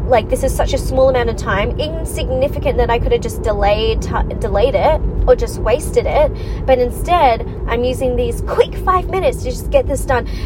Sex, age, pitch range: female, 20-39, 205-280 Hz